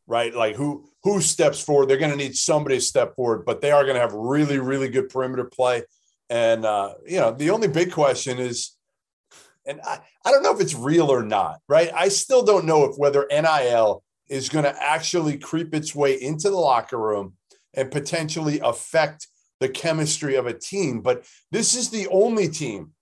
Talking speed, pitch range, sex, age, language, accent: 200 wpm, 135-185 Hz, male, 40-59, English, American